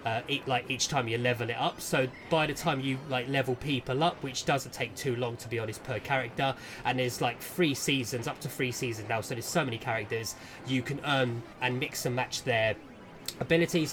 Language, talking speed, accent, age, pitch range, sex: English, 220 wpm, British, 20-39, 115-135 Hz, male